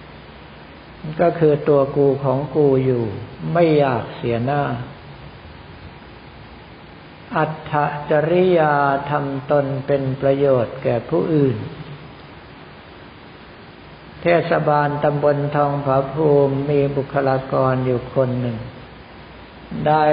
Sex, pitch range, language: male, 130-155 Hz, Thai